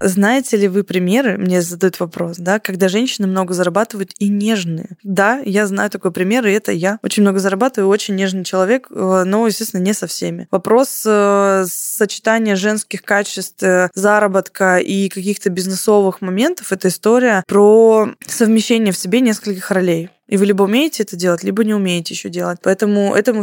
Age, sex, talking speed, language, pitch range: 20-39, female, 160 wpm, Russian, 195-230 Hz